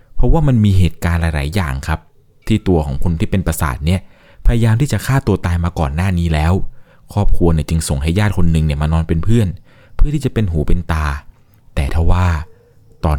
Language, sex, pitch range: Thai, male, 80-100 Hz